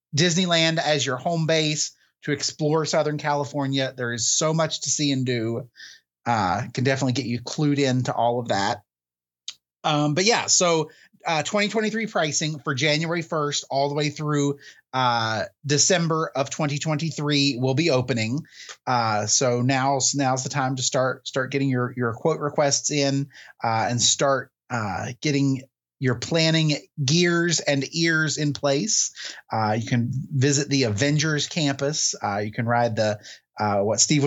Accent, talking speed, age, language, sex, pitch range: American, 160 wpm, 30-49, English, male, 125-150 Hz